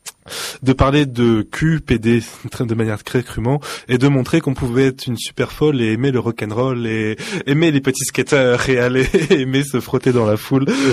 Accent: French